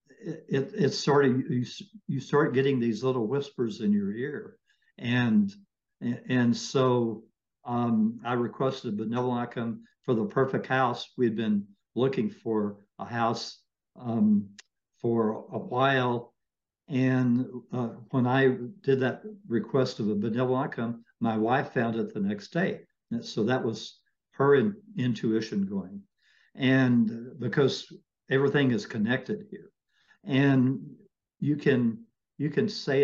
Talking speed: 135 wpm